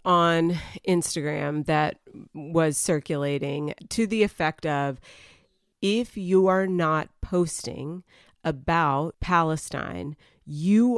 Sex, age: female, 30-49